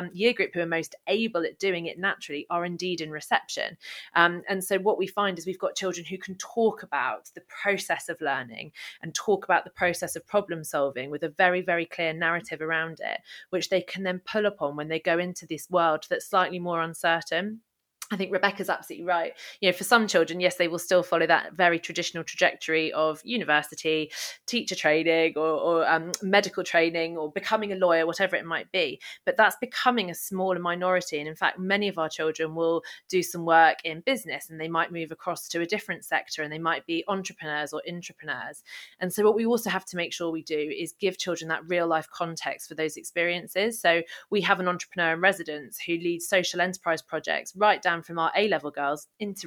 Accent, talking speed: British, 210 wpm